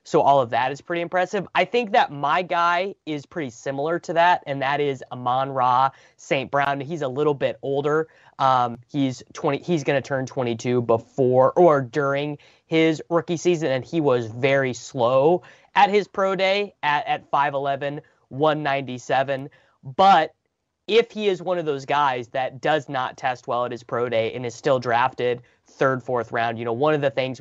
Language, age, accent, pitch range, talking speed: English, 20-39, American, 125-150 Hz, 190 wpm